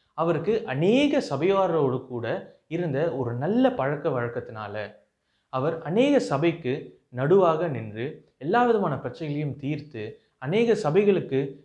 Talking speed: 100 wpm